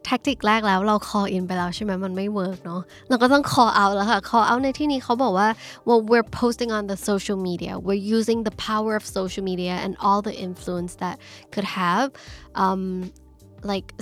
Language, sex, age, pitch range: Thai, female, 10-29, 190-240 Hz